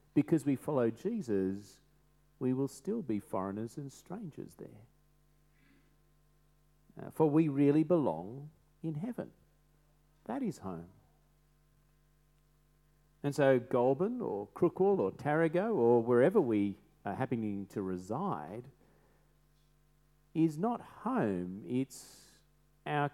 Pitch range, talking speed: 130-150 Hz, 105 wpm